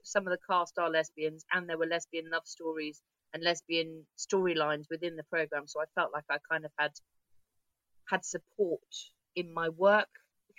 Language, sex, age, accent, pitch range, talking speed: English, female, 30-49, British, 150-205 Hz, 180 wpm